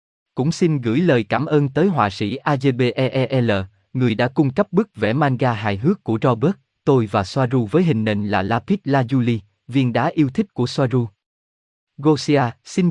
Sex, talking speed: male, 175 wpm